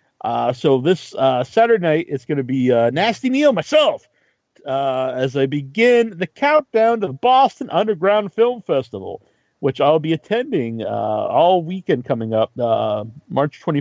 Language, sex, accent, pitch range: English, male, American, 135-195 Hz